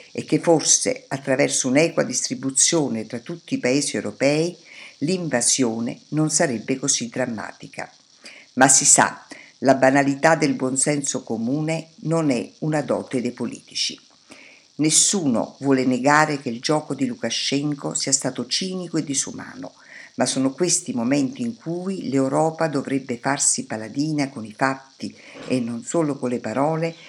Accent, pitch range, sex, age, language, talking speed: native, 130-160 Hz, female, 50-69, Italian, 140 wpm